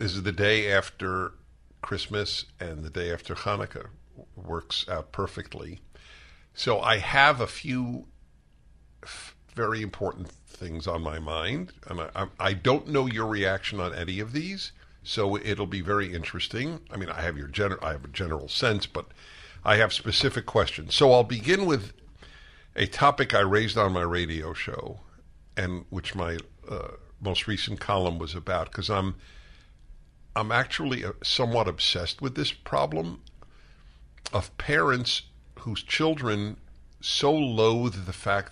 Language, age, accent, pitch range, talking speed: English, 50-69, American, 85-110 Hz, 150 wpm